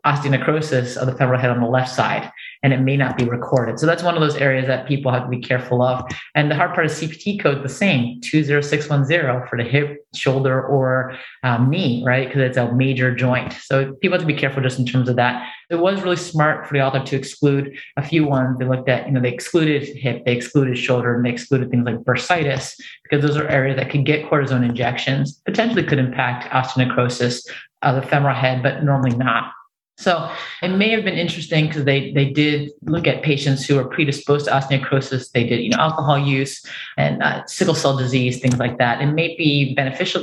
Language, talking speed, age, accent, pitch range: English, 220 wpm, 30-49, American, 125-150 Hz